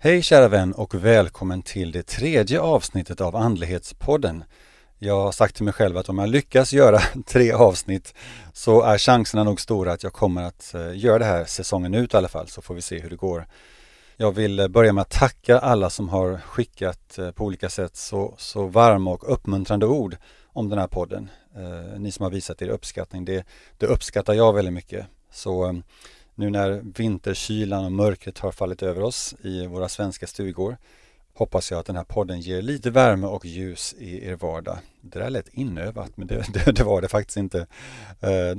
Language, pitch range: Swedish, 90-110 Hz